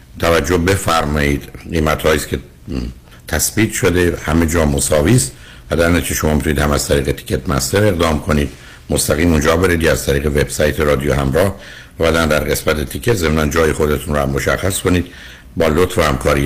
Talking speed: 165 wpm